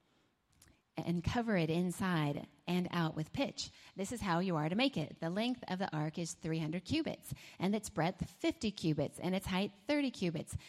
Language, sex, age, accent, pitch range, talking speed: English, female, 30-49, American, 170-230 Hz, 190 wpm